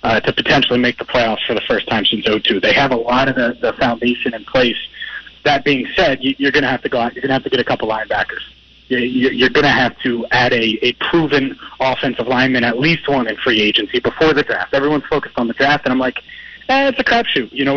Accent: American